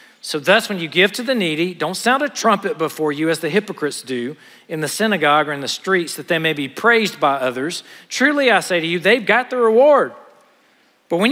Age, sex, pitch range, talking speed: 50-69, male, 160-215 Hz, 230 wpm